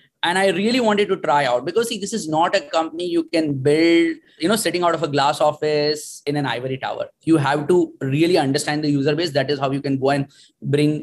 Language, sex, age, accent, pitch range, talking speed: English, male, 20-39, Indian, 140-175 Hz, 245 wpm